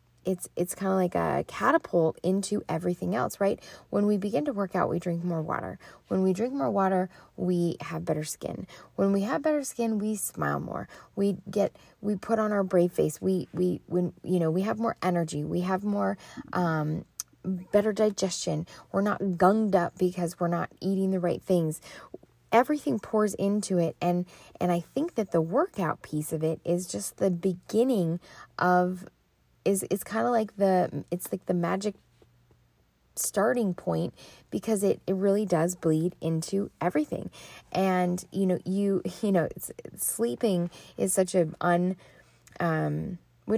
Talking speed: 170 wpm